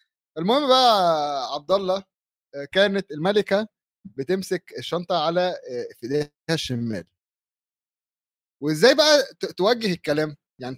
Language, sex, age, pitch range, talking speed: Arabic, male, 30-49, 130-180 Hz, 90 wpm